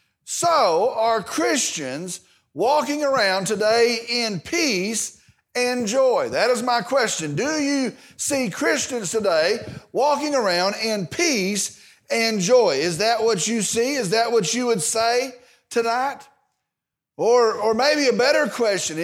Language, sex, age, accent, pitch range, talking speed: English, male, 40-59, American, 205-265 Hz, 135 wpm